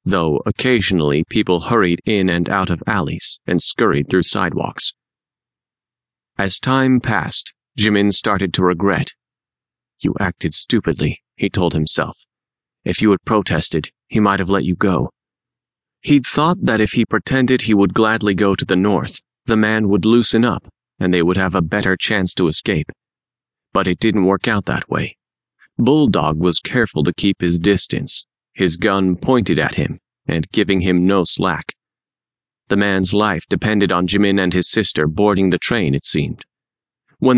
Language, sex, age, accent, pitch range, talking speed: English, male, 30-49, American, 90-110 Hz, 165 wpm